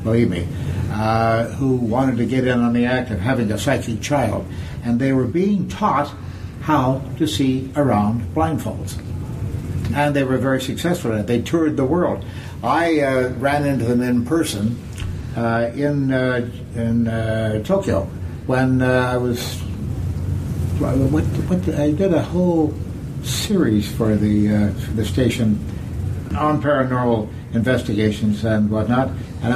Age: 60-79